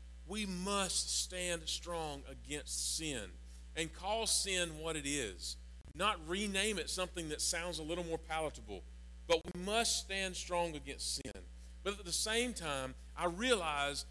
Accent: American